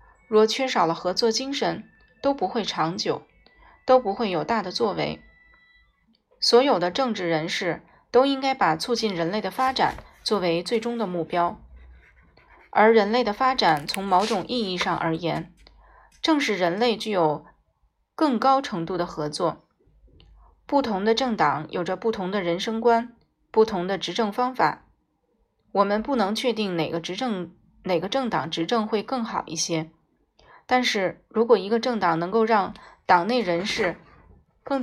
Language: Chinese